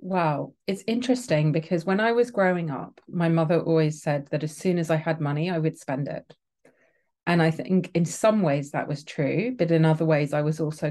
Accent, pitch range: British, 155-175 Hz